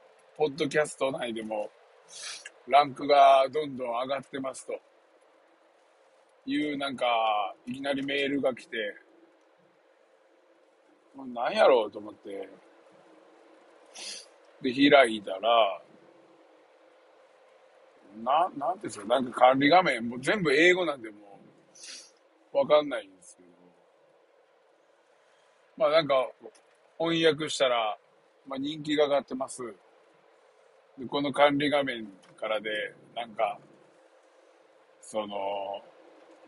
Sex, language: male, Japanese